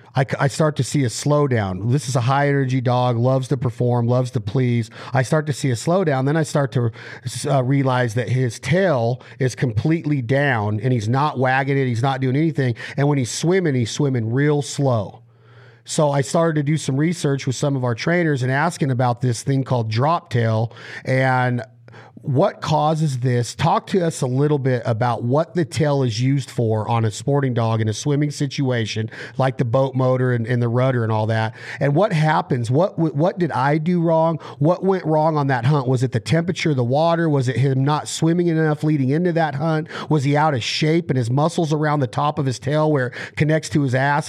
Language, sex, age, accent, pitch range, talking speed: English, male, 40-59, American, 125-155 Hz, 215 wpm